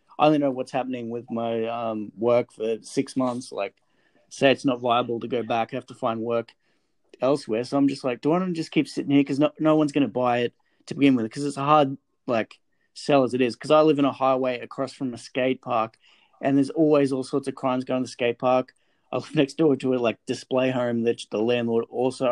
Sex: male